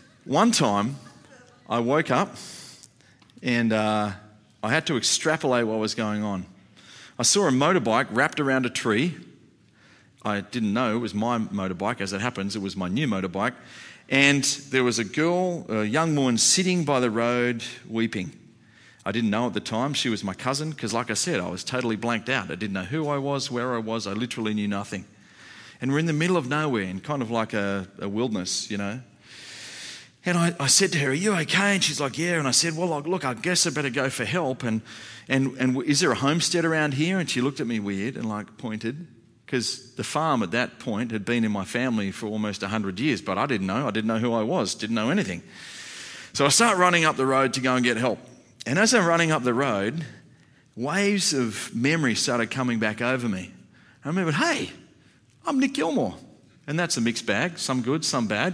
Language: English